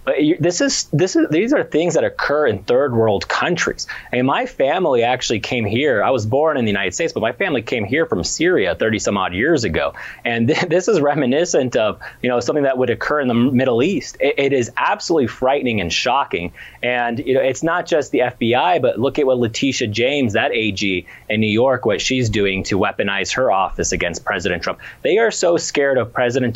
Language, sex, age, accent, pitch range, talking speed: English, male, 30-49, American, 110-140 Hz, 215 wpm